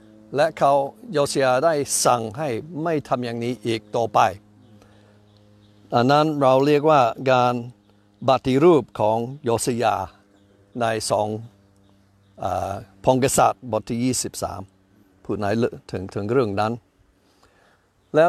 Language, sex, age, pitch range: Thai, male, 60-79, 100-140 Hz